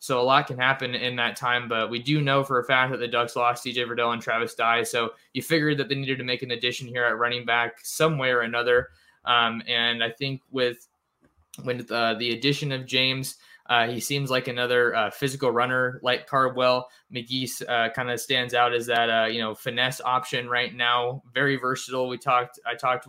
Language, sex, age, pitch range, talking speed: English, male, 20-39, 115-130 Hz, 220 wpm